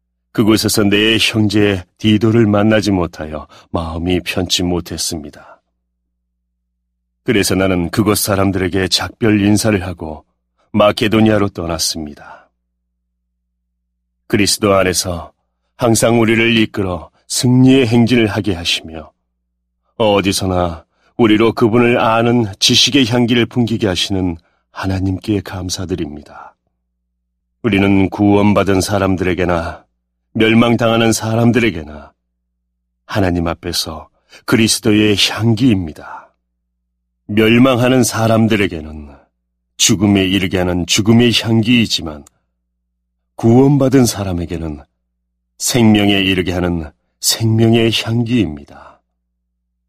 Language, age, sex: Korean, 40-59, male